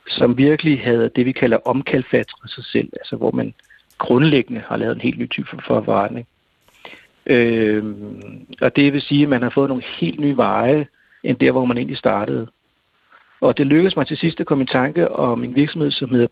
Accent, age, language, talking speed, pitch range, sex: native, 60-79, Danish, 200 wpm, 120-150 Hz, male